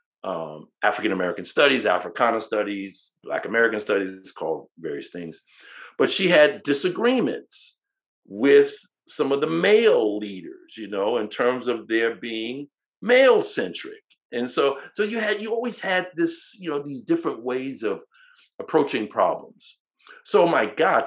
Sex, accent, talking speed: male, American, 150 wpm